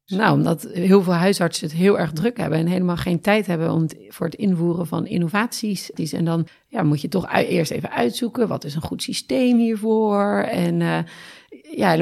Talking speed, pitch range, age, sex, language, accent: 200 wpm, 170-205 Hz, 40-59, female, Dutch, Dutch